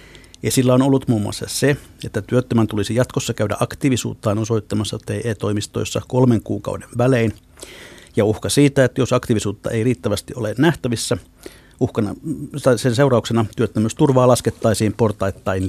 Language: Finnish